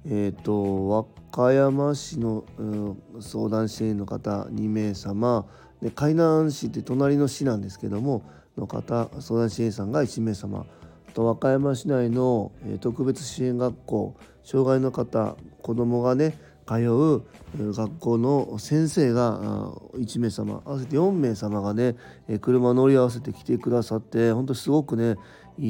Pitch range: 110-135 Hz